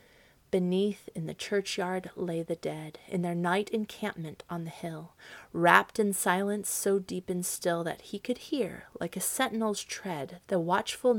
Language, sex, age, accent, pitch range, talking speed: English, female, 30-49, American, 170-210 Hz, 165 wpm